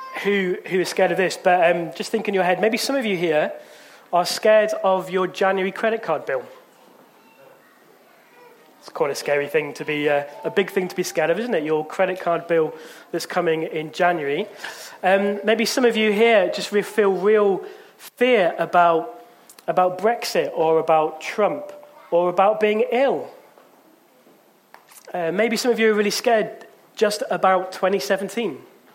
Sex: male